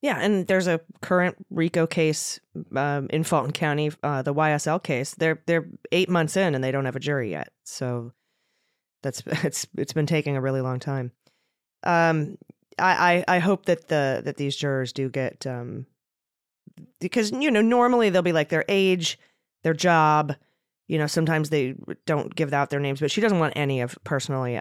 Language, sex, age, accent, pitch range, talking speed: English, female, 20-39, American, 135-180 Hz, 190 wpm